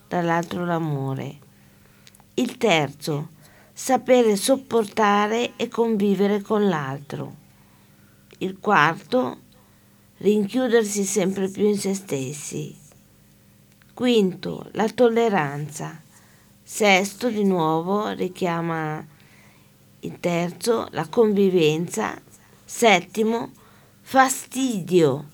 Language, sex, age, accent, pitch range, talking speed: Italian, female, 50-69, native, 180-225 Hz, 75 wpm